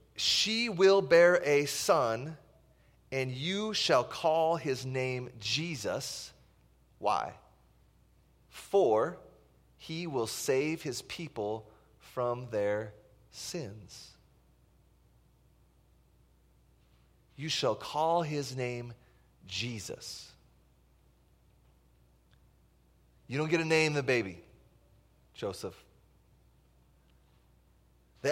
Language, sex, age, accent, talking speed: English, male, 30-49, American, 80 wpm